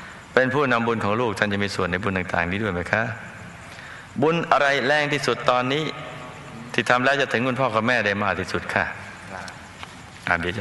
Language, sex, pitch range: Thai, male, 90-115 Hz